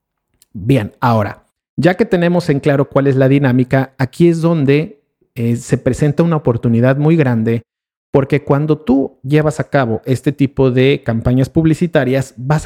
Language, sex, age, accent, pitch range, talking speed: Spanish, male, 50-69, Mexican, 115-145 Hz, 155 wpm